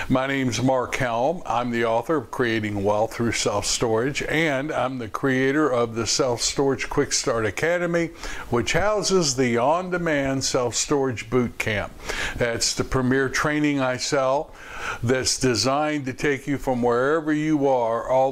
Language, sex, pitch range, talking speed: English, male, 120-155 Hz, 145 wpm